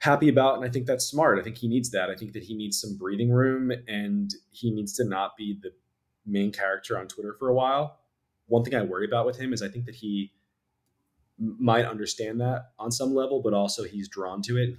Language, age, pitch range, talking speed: English, 20-39, 105-125 Hz, 240 wpm